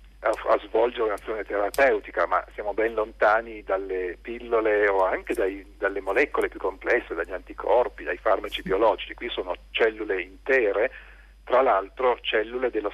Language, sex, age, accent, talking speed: Italian, male, 50-69, native, 135 wpm